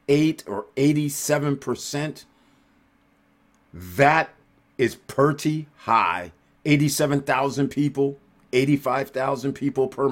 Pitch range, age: 110-140 Hz, 50-69